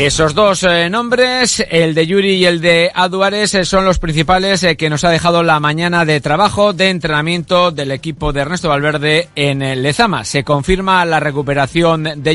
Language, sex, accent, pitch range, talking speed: Spanish, male, Spanish, 140-175 Hz, 180 wpm